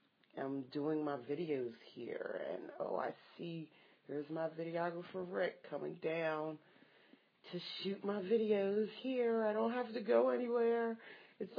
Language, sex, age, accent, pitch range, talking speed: English, female, 40-59, American, 150-185 Hz, 140 wpm